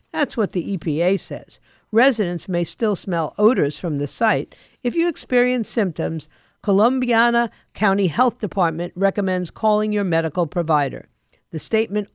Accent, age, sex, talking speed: American, 50-69, female, 140 wpm